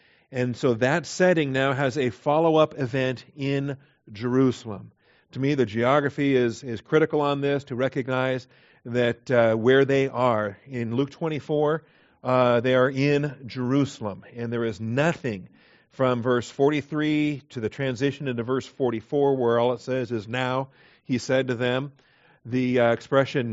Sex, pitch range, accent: male, 120-145 Hz, American